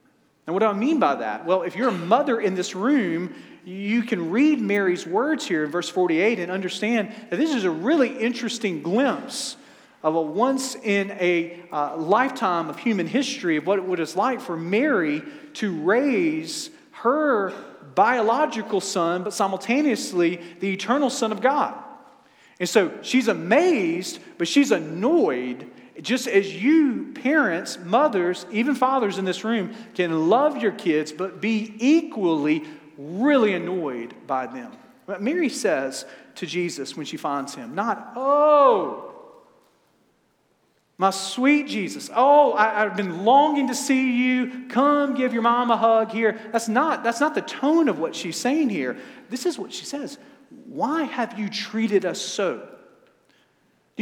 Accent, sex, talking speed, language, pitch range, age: American, male, 160 wpm, English, 190-285 Hz, 40-59